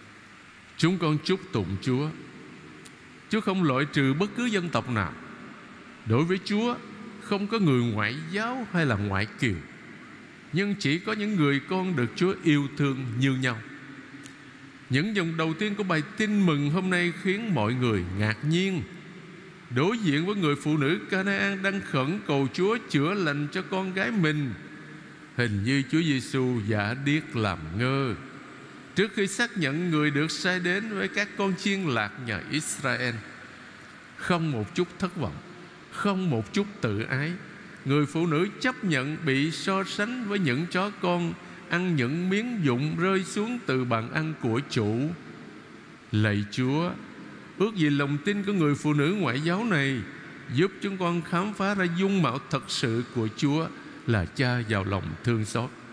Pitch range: 125-185 Hz